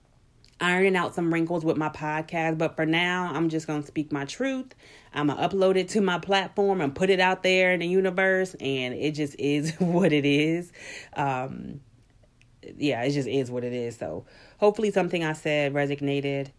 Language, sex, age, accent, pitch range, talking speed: English, female, 30-49, American, 140-175 Hz, 195 wpm